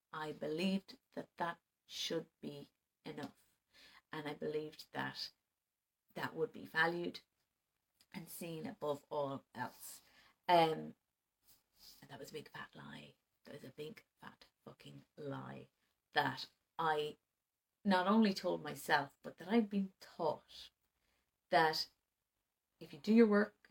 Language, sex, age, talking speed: English, female, 30-49, 130 wpm